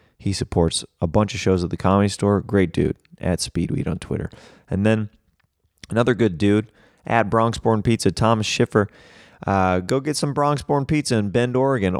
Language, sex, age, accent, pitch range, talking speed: English, male, 20-39, American, 90-115 Hz, 175 wpm